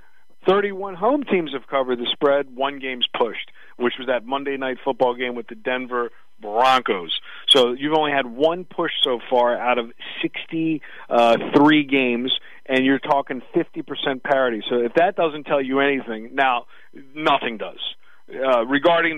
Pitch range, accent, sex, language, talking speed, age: 130-160 Hz, American, male, English, 155 wpm, 40-59